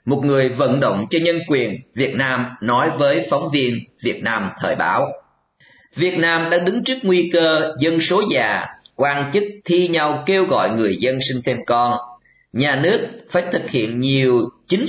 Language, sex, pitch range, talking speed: Vietnamese, male, 125-180 Hz, 180 wpm